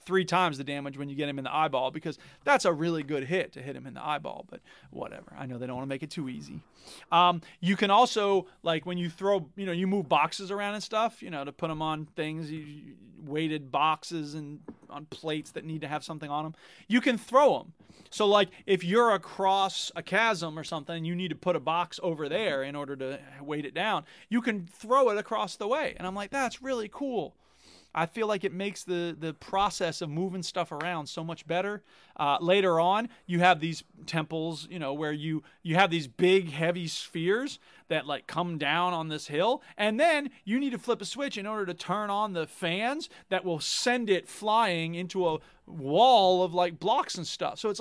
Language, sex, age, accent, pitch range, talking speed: English, male, 30-49, American, 155-210 Hz, 225 wpm